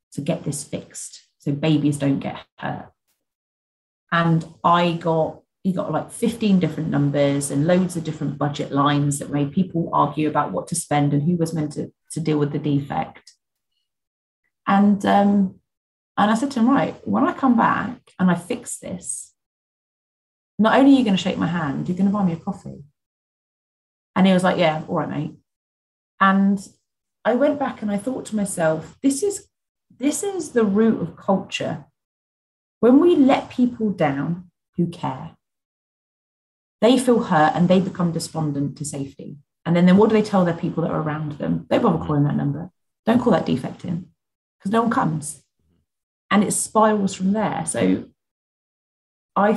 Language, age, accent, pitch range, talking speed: English, 30-49, British, 150-205 Hz, 180 wpm